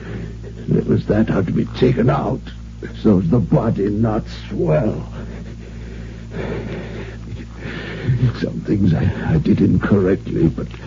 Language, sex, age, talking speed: English, male, 60-79, 115 wpm